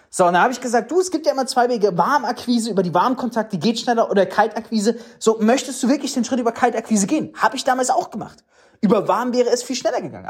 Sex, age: male, 30-49